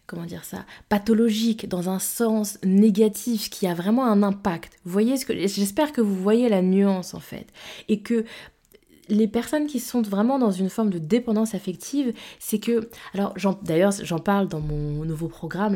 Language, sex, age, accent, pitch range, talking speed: French, female, 20-39, French, 175-220 Hz, 185 wpm